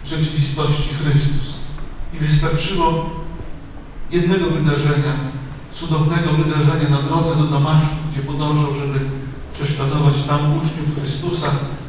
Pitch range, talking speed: 145-155 Hz, 100 wpm